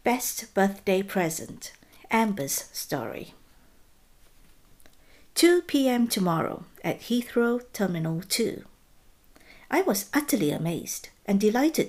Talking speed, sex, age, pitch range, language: 90 wpm, female, 60-79, 165-245 Hz, English